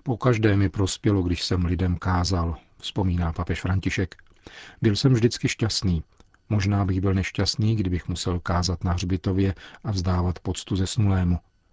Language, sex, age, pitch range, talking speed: Czech, male, 40-59, 95-110 Hz, 150 wpm